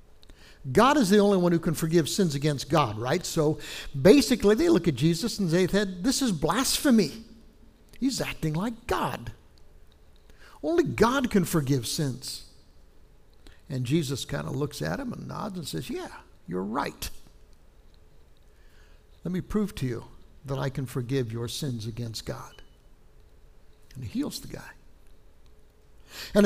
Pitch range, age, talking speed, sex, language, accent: 115-190 Hz, 60-79, 150 wpm, male, English, American